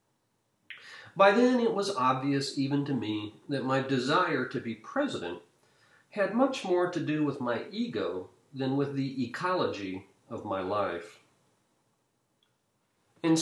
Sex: male